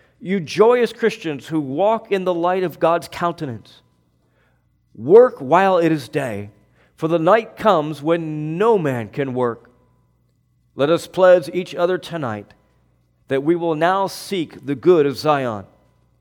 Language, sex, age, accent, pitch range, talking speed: English, male, 40-59, American, 125-180 Hz, 150 wpm